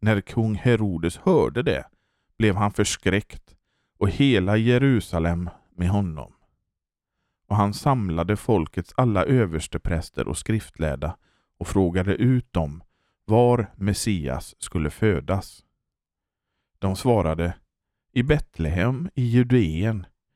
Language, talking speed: Swedish, 105 wpm